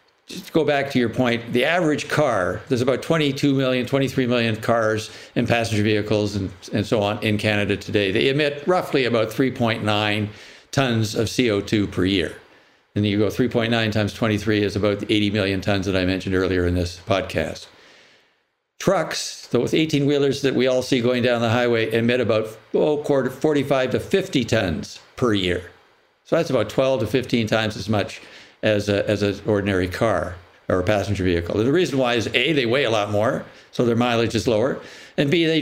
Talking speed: 190 wpm